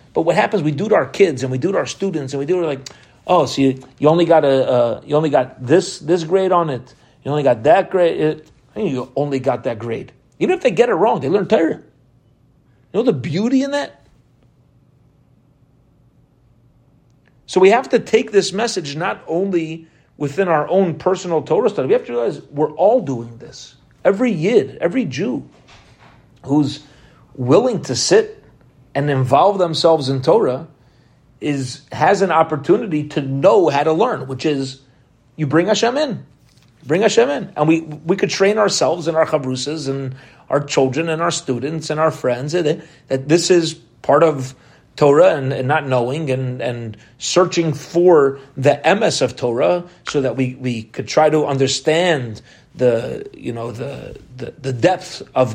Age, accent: 40-59, American